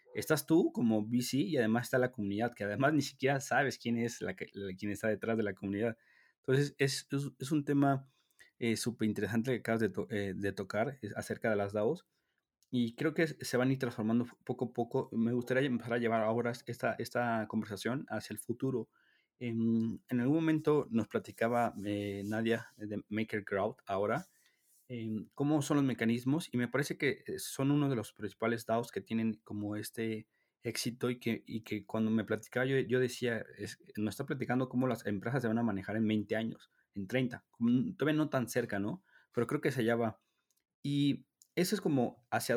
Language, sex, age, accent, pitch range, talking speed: Spanish, male, 30-49, Mexican, 110-135 Hz, 200 wpm